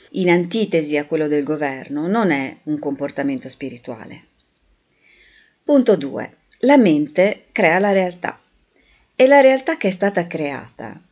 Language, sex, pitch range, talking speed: Italian, female, 160-250 Hz, 135 wpm